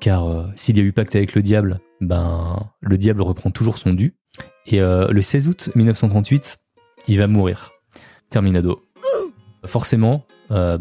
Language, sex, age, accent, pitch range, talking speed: French, male, 20-39, French, 95-125 Hz, 160 wpm